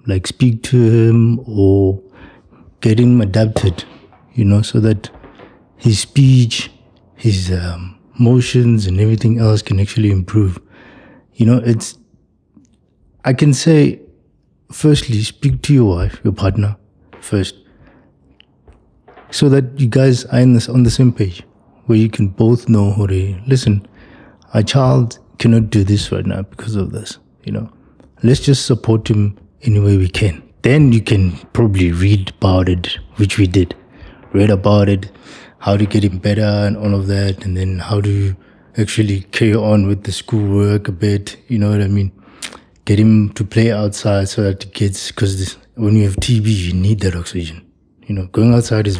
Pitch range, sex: 100-115 Hz, male